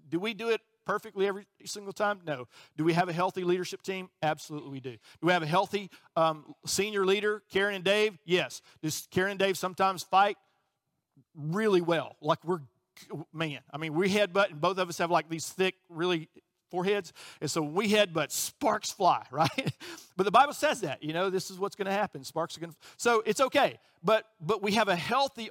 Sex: male